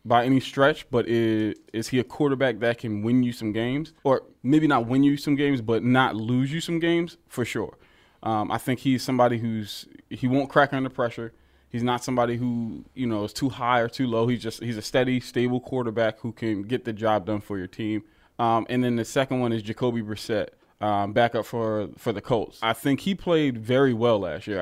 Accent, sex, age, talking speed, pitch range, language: American, male, 20-39, 225 wpm, 110-135 Hz, English